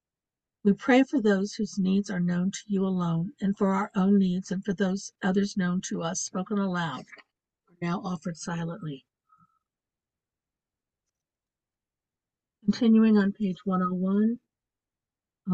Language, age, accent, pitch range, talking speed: English, 60-79, American, 170-200 Hz, 125 wpm